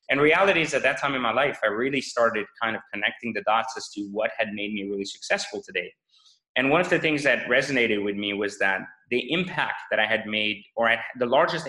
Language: English